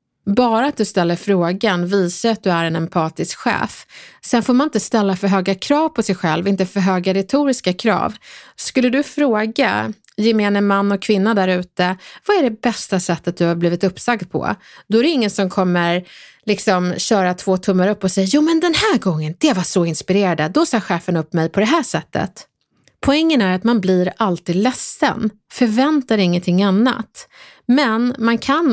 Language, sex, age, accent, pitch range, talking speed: English, female, 30-49, Swedish, 180-230 Hz, 190 wpm